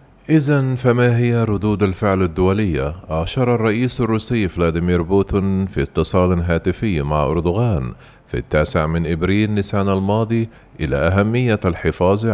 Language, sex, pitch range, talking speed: Arabic, male, 85-110 Hz, 120 wpm